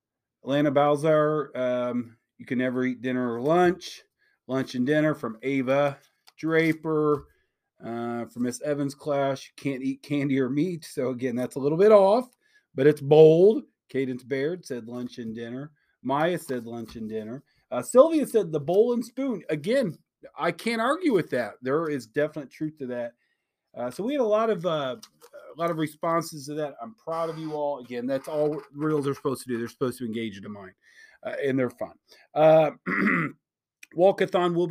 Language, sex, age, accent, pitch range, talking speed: English, male, 40-59, American, 125-160 Hz, 185 wpm